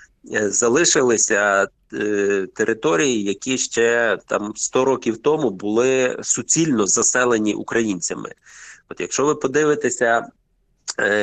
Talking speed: 95 wpm